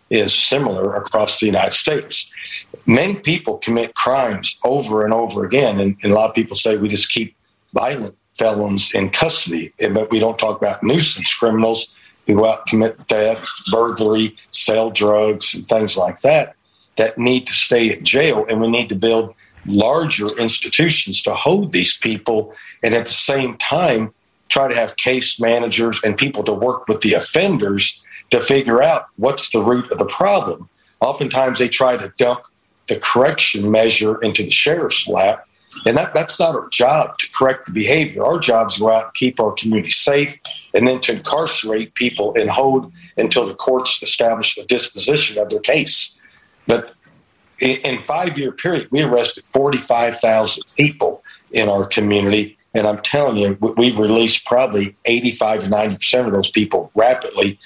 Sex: male